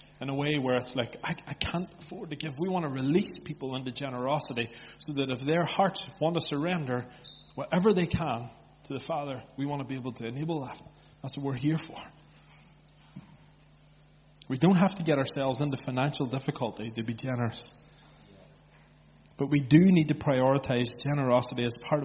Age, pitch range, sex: 30-49, 125-160 Hz, male